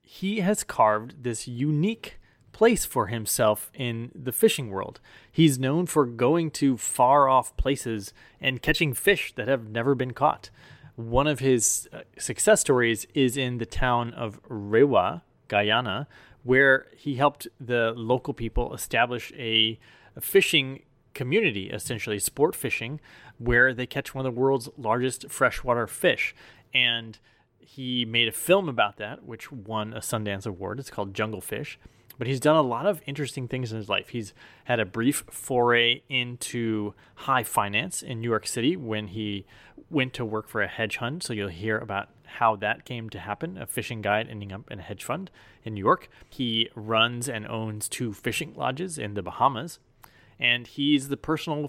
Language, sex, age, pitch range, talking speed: English, male, 30-49, 110-140 Hz, 170 wpm